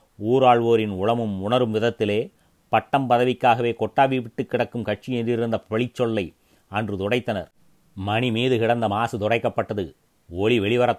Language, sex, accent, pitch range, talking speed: Tamil, male, native, 105-125 Hz, 110 wpm